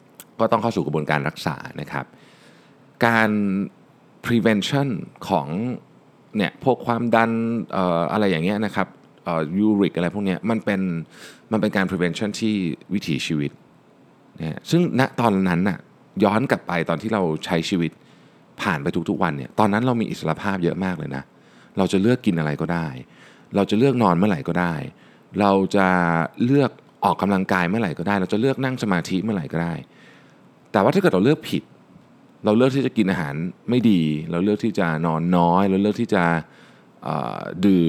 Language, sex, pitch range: Thai, male, 85-115 Hz